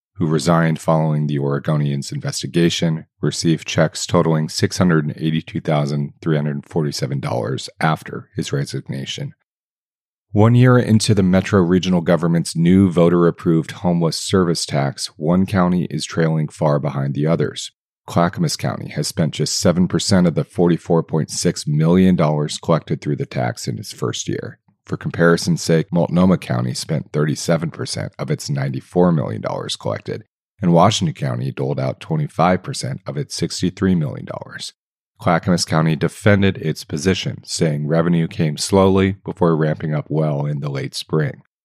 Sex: male